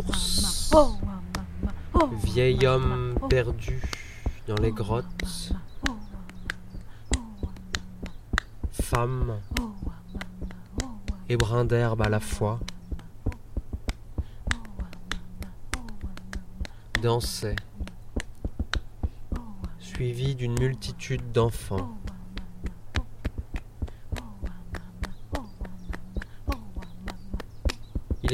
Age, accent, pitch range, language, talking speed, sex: 30-49, French, 90-115 Hz, French, 40 wpm, male